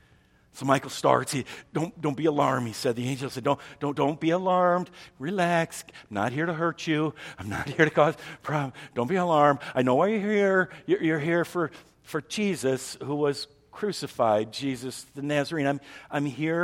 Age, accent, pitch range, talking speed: 50-69, American, 145-220 Hz, 190 wpm